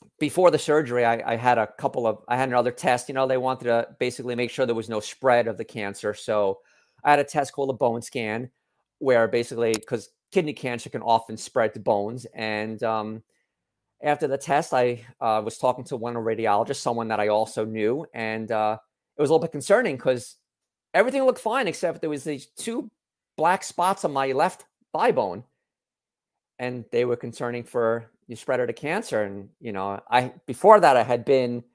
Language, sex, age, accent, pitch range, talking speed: English, male, 40-59, American, 110-140 Hz, 200 wpm